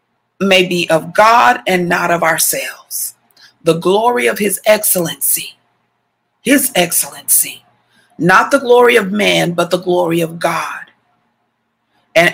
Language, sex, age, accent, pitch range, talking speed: English, female, 40-59, American, 175-215 Hz, 125 wpm